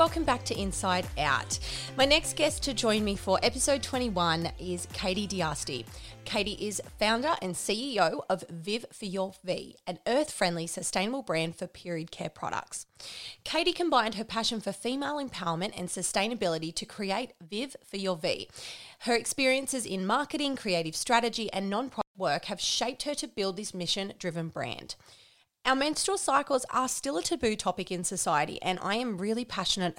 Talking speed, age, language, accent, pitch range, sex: 165 wpm, 30-49, English, Australian, 180-250 Hz, female